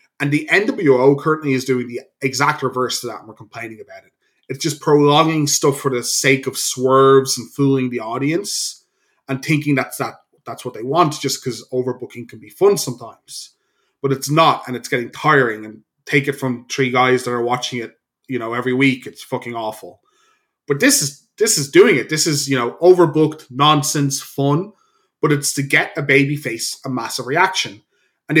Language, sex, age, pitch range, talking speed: English, male, 20-39, 125-150 Hz, 195 wpm